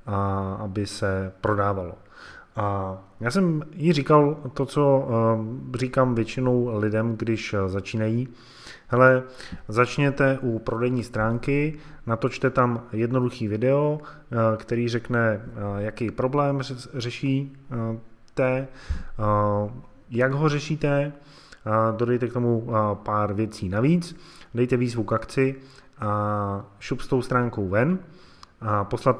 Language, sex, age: Czech, male, 20-39